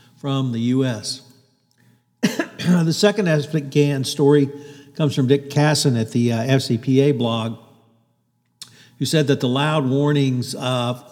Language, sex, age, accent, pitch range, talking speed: English, male, 50-69, American, 120-140 Hz, 125 wpm